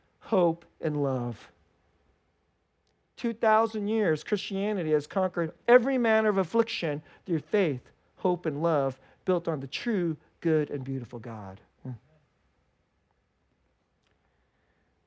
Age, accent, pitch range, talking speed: 40-59, American, 160-250 Hz, 105 wpm